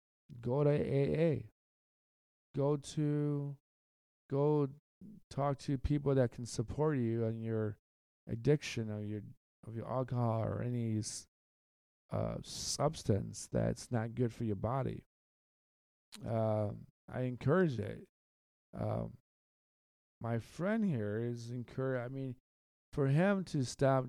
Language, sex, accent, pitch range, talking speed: English, male, American, 105-135 Hz, 115 wpm